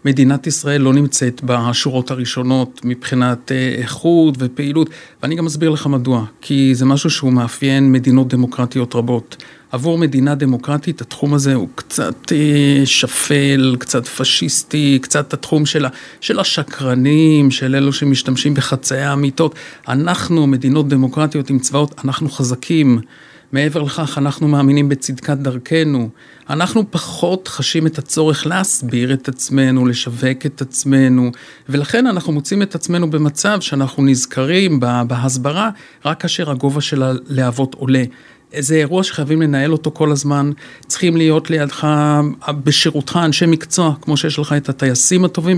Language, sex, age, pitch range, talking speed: Hebrew, male, 50-69, 130-155 Hz, 130 wpm